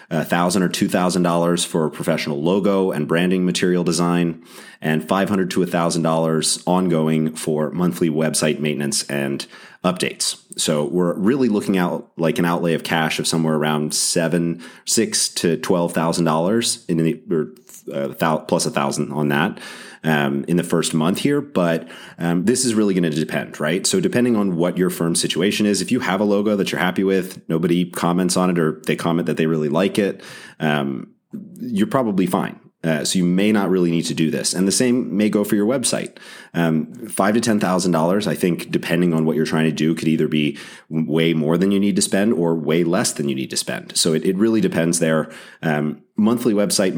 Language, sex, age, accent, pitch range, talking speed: English, male, 30-49, American, 80-95 Hz, 210 wpm